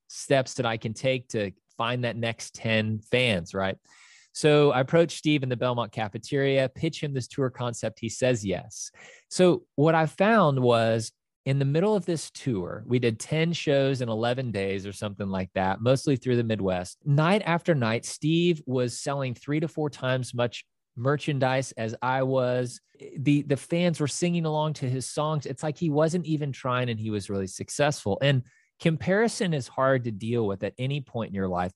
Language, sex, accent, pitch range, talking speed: English, male, American, 110-145 Hz, 195 wpm